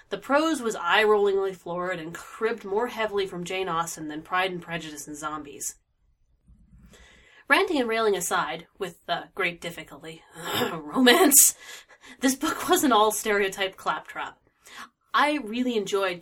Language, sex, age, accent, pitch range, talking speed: English, female, 30-49, American, 175-230 Hz, 135 wpm